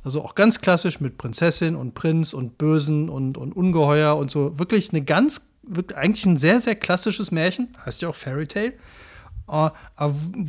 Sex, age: male, 40-59